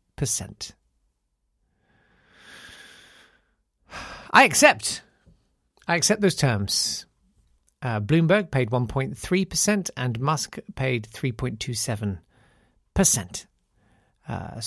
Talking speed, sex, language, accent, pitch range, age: 55 wpm, male, English, British, 115-165 Hz, 50-69